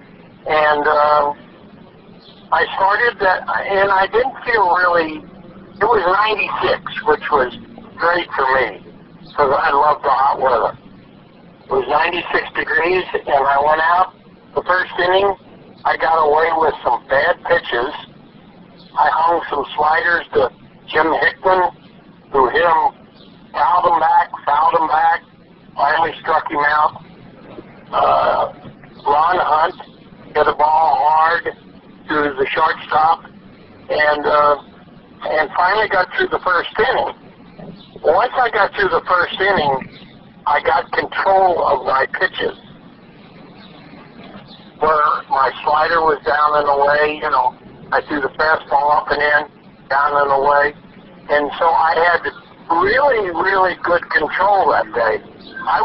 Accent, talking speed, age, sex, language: American, 135 wpm, 50-69, male, English